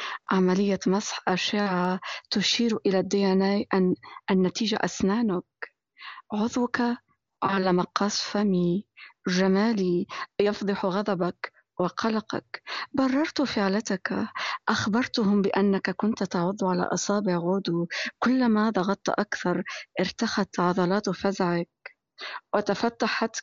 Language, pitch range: English, 185-220 Hz